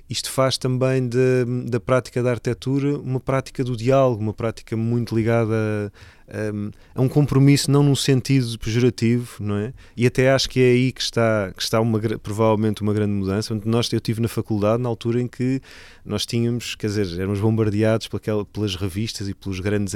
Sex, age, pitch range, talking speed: male, 20-39, 100-120 Hz, 175 wpm